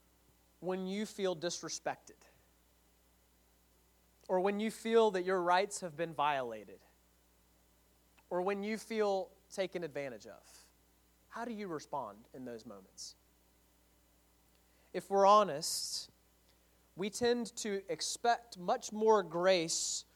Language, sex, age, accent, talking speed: English, male, 30-49, American, 115 wpm